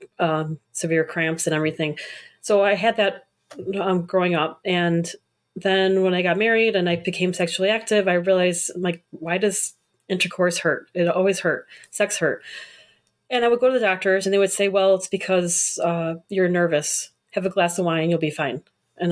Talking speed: 190 wpm